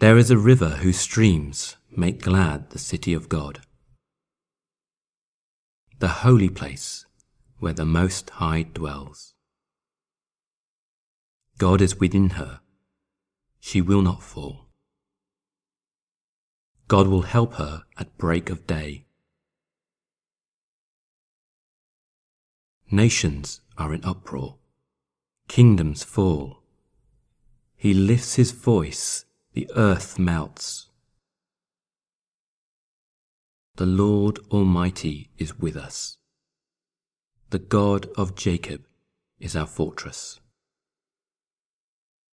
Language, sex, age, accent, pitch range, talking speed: English, male, 40-59, British, 80-105 Hz, 90 wpm